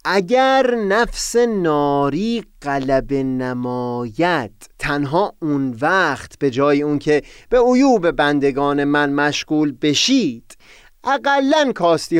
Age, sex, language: 30-49, male, Persian